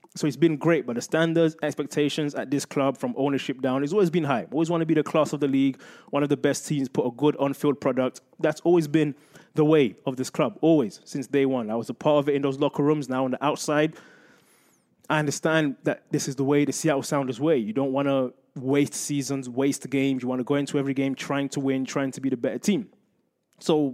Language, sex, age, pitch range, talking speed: English, male, 20-39, 125-155 Hz, 250 wpm